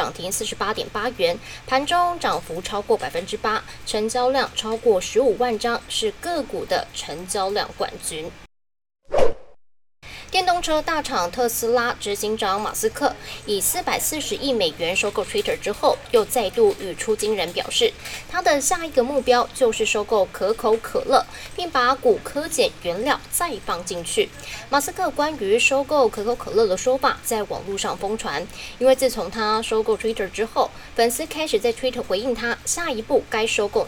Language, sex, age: Chinese, female, 10-29